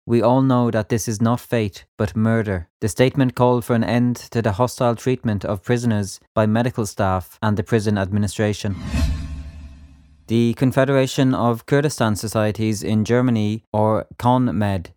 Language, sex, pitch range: English, male, 105-120 Hz